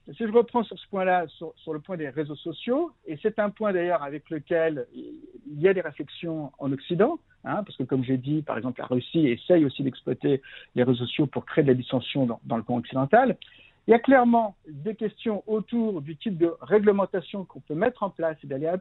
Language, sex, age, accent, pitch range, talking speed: French, male, 50-69, French, 140-210 Hz, 230 wpm